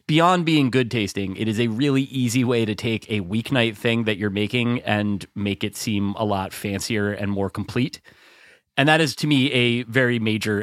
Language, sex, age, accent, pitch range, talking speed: English, male, 30-49, American, 100-130 Hz, 205 wpm